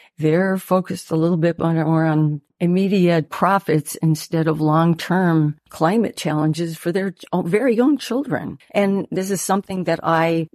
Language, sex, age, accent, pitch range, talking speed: English, female, 50-69, American, 160-185 Hz, 140 wpm